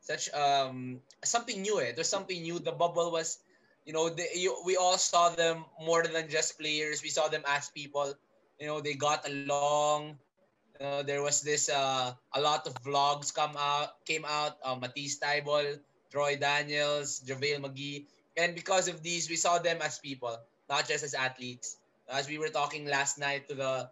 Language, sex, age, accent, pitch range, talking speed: English, male, 20-39, Filipino, 140-160 Hz, 190 wpm